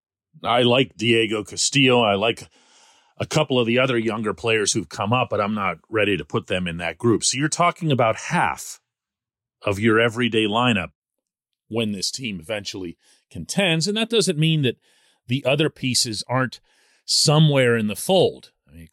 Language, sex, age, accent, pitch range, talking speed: English, male, 40-59, American, 100-130 Hz, 170 wpm